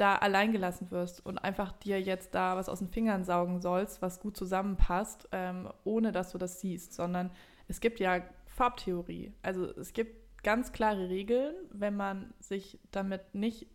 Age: 20-39